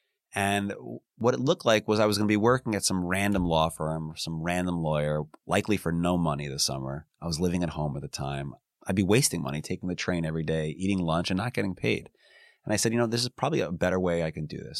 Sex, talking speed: male, 265 wpm